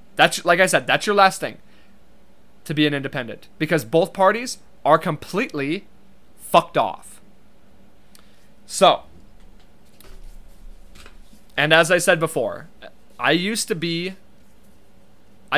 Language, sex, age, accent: English, male, 20-39, American